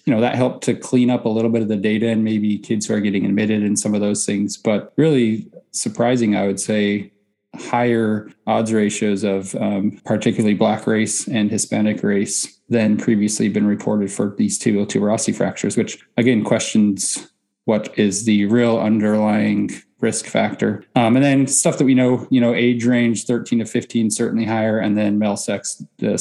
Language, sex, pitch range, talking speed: English, male, 105-125 Hz, 190 wpm